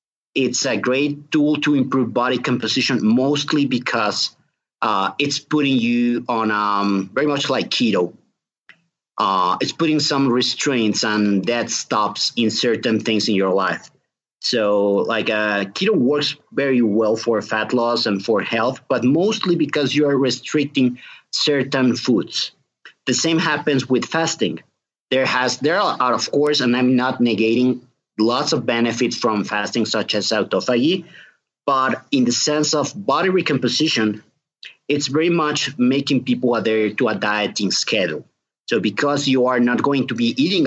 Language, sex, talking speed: English, male, 155 wpm